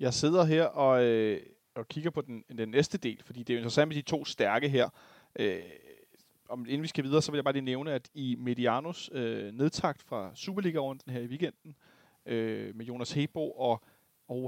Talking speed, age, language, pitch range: 200 wpm, 30-49, Danish, 130-165 Hz